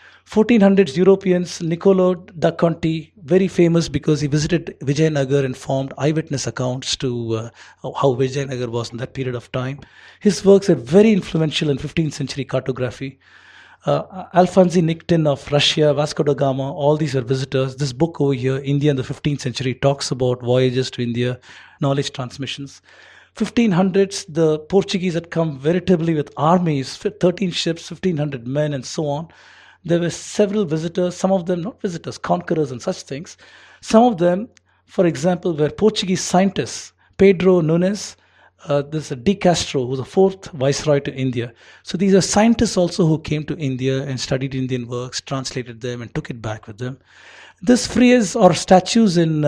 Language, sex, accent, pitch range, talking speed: English, male, Indian, 135-180 Hz, 165 wpm